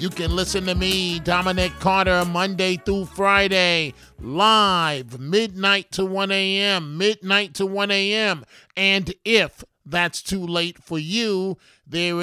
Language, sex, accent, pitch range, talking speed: English, male, American, 180-200 Hz, 135 wpm